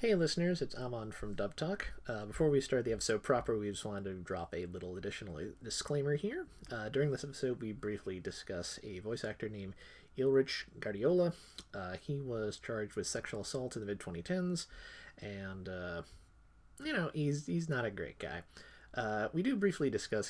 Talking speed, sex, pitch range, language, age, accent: 185 wpm, male, 95-140 Hz, English, 30-49, American